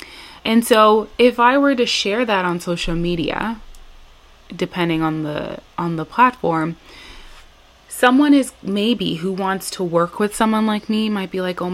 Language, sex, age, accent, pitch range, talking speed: English, female, 20-39, American, 160-210 Hz, 165 wpm